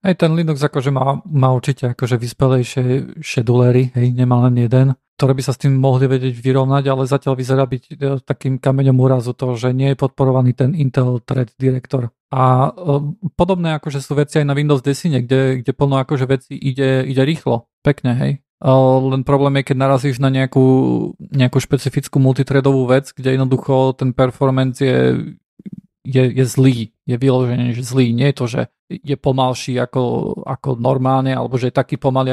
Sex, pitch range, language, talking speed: male, 130-140 Hz, Slovak, 175 wpm